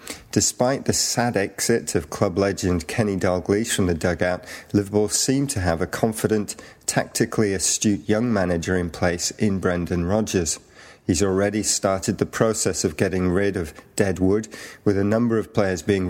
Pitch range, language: 90-105 Hz, English